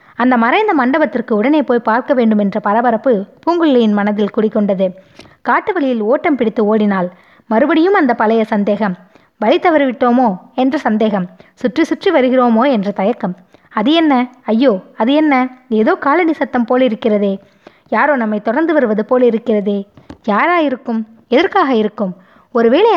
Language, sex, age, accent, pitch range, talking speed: Tamil, female, 20-39, native, 205-280 Hz, 135 wpm